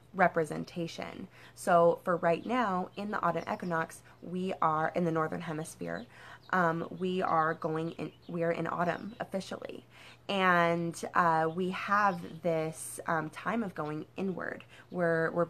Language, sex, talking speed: English, female, 145 wpm